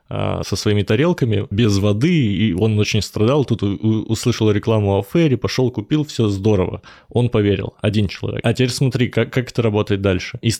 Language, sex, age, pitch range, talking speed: Russian, male, 20-39, 100-125 Hz, 175 wpm